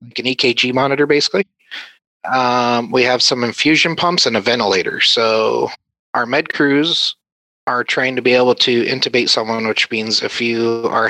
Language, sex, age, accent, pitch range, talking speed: English, male, 30-49, American, 100-125 Hz, 160 wpm